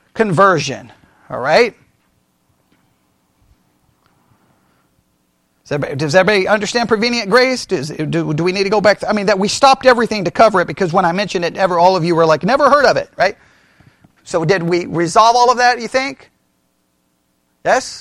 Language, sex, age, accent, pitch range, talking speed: English, male, 40-59, American, 165-235 Hz, 180 wpm